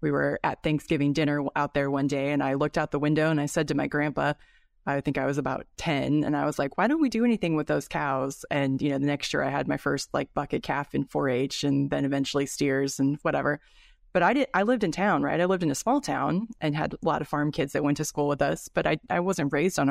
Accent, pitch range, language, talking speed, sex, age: American, 145-170 Hz, English, 280 wpm, female, 20-39